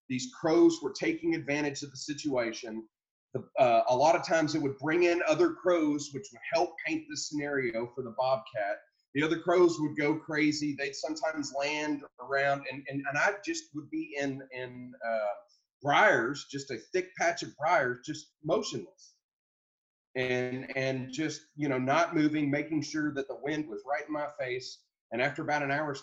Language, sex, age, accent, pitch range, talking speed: English, male, 30-49, American, 130-155 Hz, 185 wpm